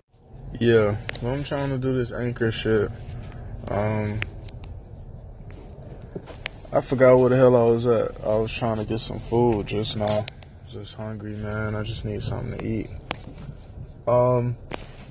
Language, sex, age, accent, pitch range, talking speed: English, male, 20-39, American, 105-120 Hz, 145 wpm